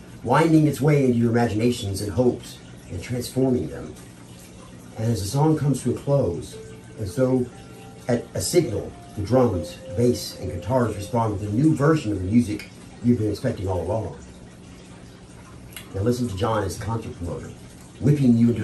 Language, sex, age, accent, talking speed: English, male, 50-69, American, 170 wpm